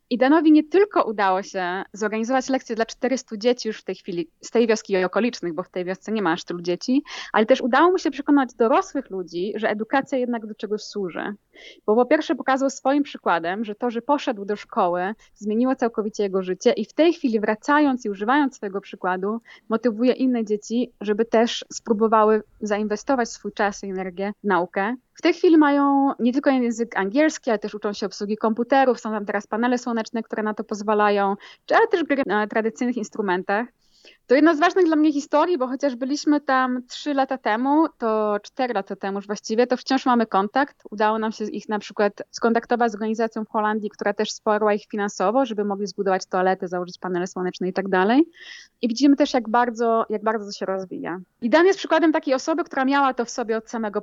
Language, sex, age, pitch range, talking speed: Polish, female, 20-39, 205-265 Hz, 200 wpm